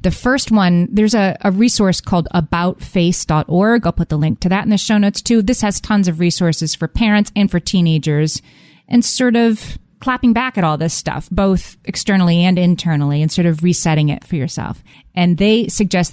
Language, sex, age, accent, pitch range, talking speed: English, female, 30-49, American, 165-195 Hz, 195 wpm